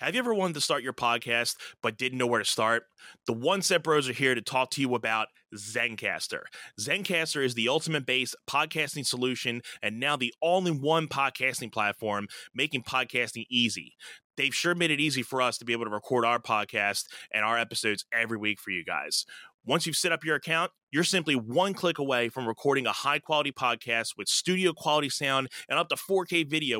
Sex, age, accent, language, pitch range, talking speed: male, 20-39, American, English, 115-150 Hz, 195 wpm